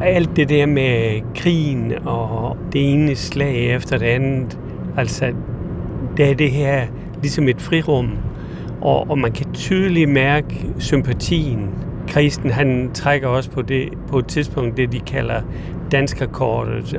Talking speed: 140 wpm